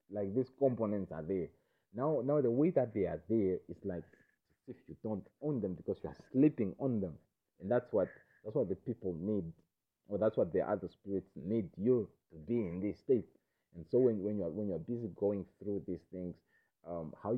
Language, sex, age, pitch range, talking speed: English, male, 30-49, 95-115 Hz, 210 wpm